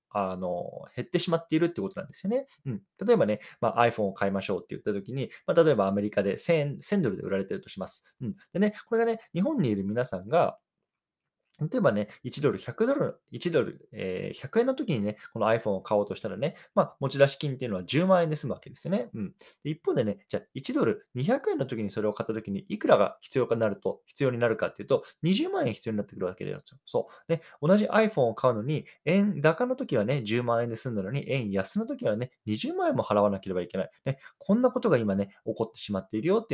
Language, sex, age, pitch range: Japanese, male, 20-39, 100-170 Hz